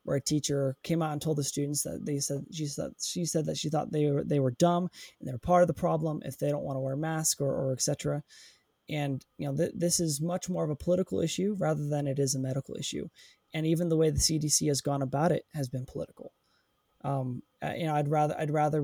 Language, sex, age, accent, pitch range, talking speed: English, male, 20-39, American, 145-165 Hz, 260 wpm